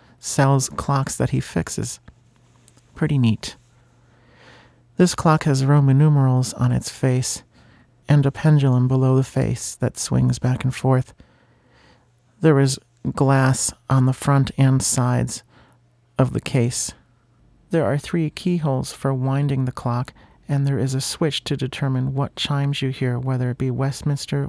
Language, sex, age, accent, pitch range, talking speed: English, male, 40-59, American, 125-140 Hz, 145 wpm